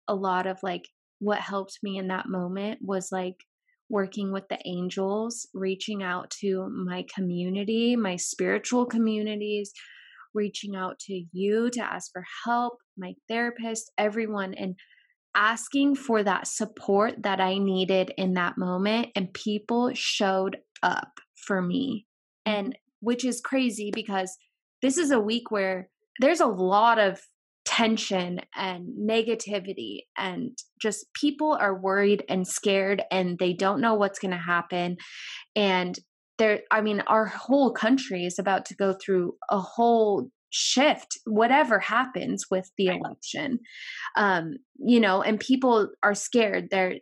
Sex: female